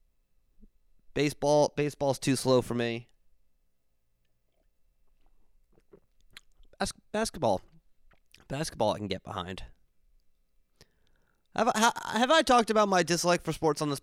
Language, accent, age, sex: English, American, 20-39, male